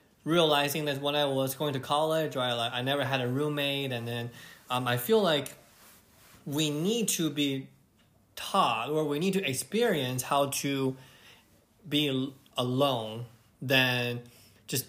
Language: English